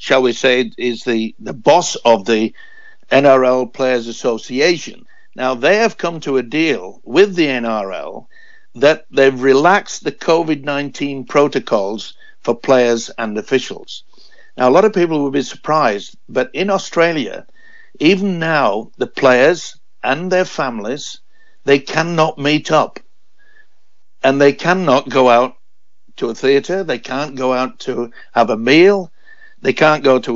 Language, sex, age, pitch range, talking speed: English, male, 60-79, 120-165 Hz, 145 wpm